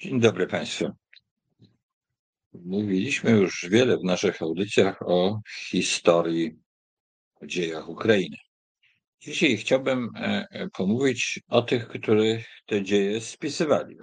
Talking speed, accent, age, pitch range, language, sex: 100 wpm, native, 50-69, 85-110 Hz, Polish, male